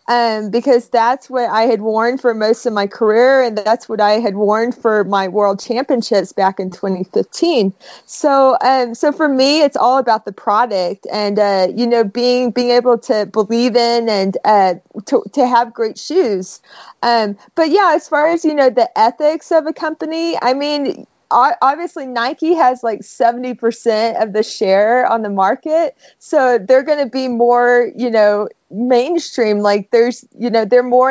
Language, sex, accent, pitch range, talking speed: English, female, American, 210-260 Hz, 180 wpm